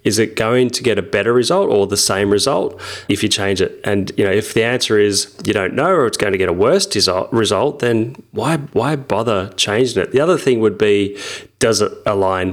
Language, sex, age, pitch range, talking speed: English, male, 30-49, 95-120 Hz, 225 wpm